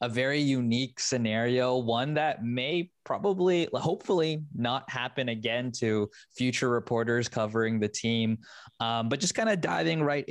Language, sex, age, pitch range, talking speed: English, male, 20-39, 115-145 Hz, 145 wpm